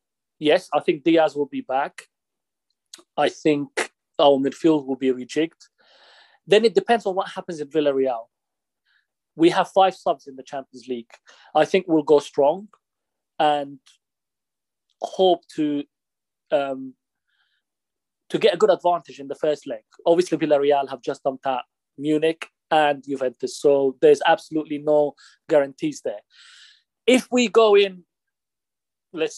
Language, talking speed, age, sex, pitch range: English, 140 wpm, 30-49, male, 145-180 Hz